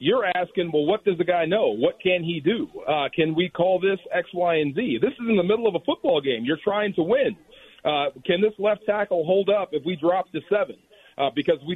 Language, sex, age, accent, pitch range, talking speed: English, male, 40-59, American, 165-210 Hz, 250 wpm